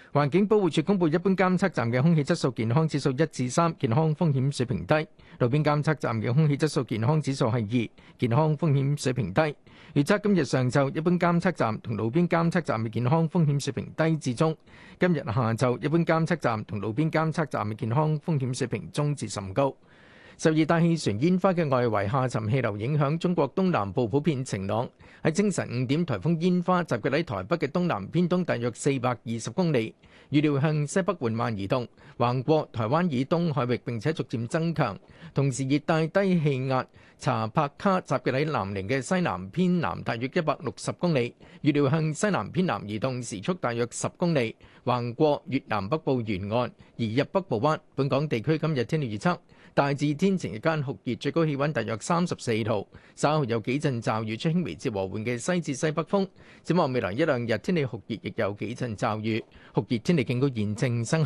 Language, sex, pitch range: Chinese, male, 120-165 Hz